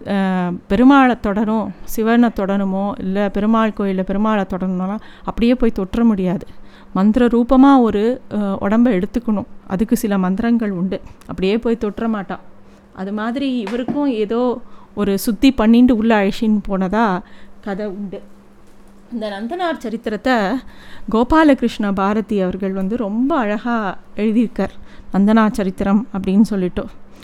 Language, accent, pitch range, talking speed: Tamil, native, 200-245 Hz, 115 wpm